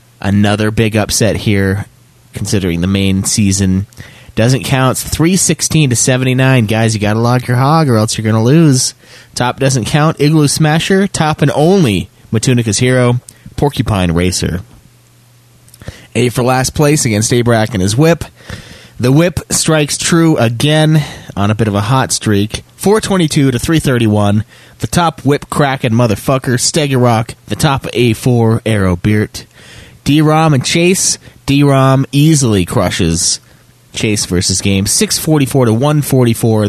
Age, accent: 30-49, American